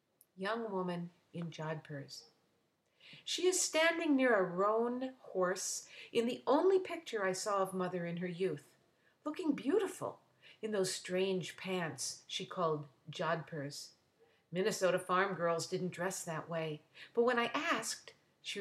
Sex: female